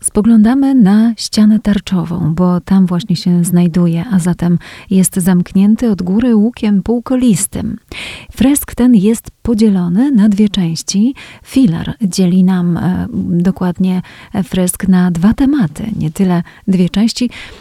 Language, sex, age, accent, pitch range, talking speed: Polish, female, 30-49, native, 180-220 Hz, 125 wpm